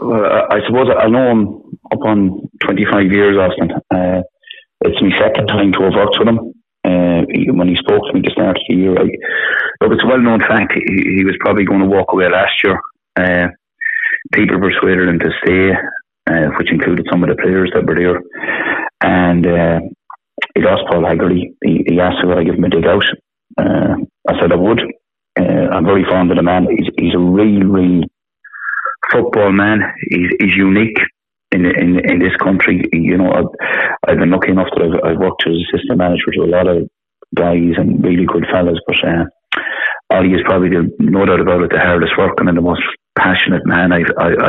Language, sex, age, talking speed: English, male, 30-49, 200 wpm